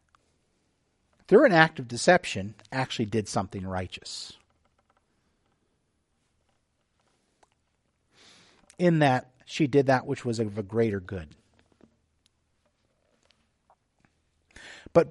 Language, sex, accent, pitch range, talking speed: English, male, American, 110-140 Hz, 85 wpm